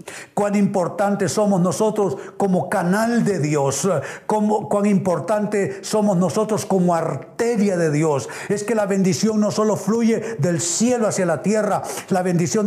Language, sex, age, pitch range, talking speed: Spanish, male, 60-79, 180-215 Hz, 145 wpm